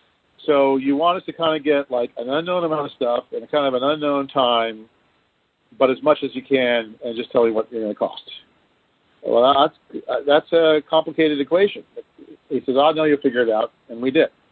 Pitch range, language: 115-145 Hz, English